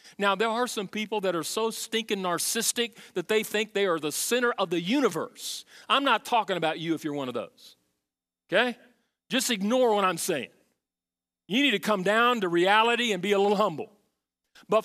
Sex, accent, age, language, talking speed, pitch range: male, American, 40-59, English, 200 wpm, 160-240 Hz